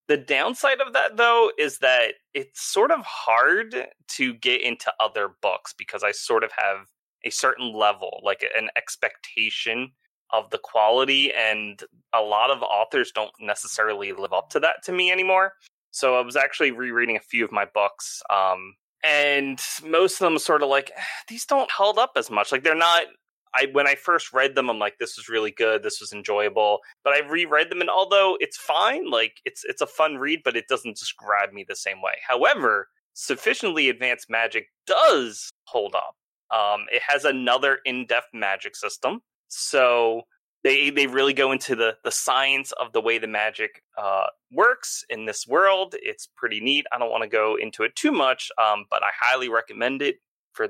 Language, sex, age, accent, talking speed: English, male, 30-49, American, 190 wpm